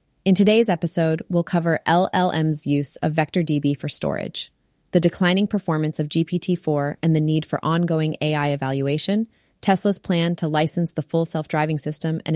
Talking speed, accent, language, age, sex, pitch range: 165 wpm, American, English, 30-49, female, 150-175 Hz